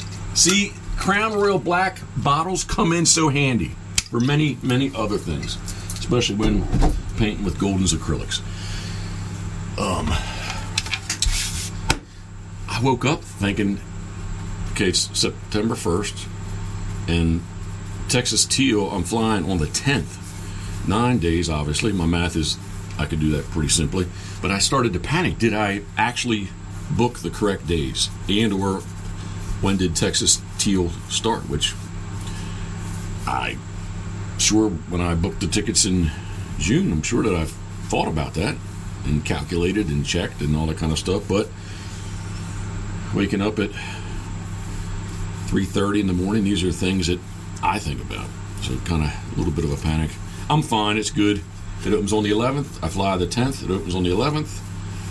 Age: 50-69